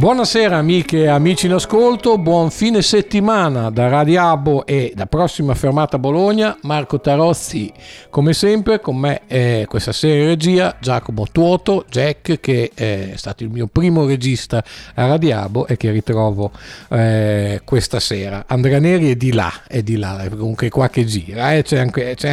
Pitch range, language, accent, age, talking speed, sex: 120-160 Hz, Italian, native, 50-69, 170 wpm, male